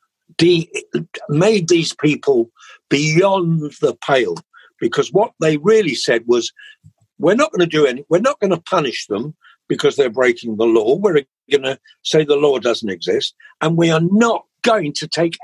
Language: English